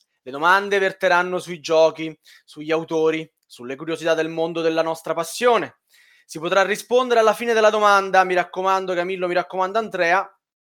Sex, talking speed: male, 150 wpm